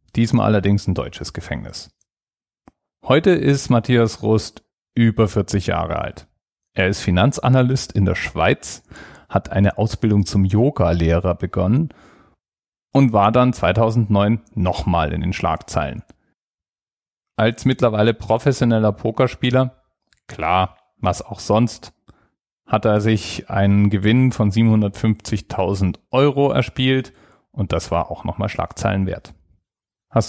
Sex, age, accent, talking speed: male, 40-59, German, 115 wpm